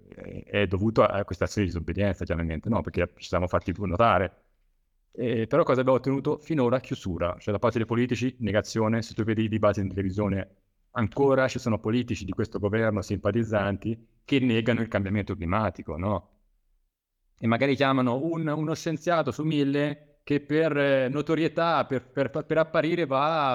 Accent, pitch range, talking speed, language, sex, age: native, 95-140 Hz, 165 wpm, Italian, male, 30-49